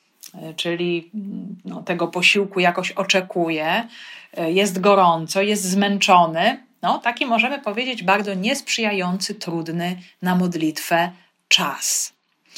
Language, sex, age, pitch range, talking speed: Polish, female, 30-49, 170-205 Hz, 85 wpm